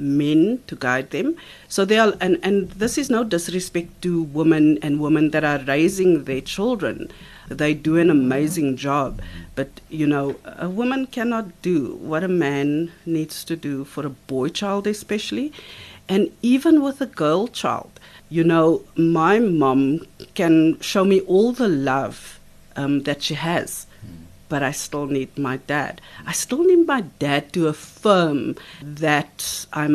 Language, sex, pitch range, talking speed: English, female, 140-190 Hz, 160 wpm